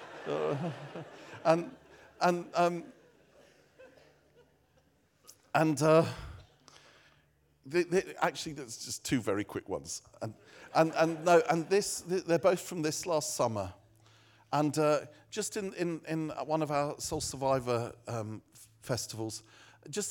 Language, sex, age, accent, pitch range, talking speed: English, male, 50-69, British, 115-145 Hz, 120 wpm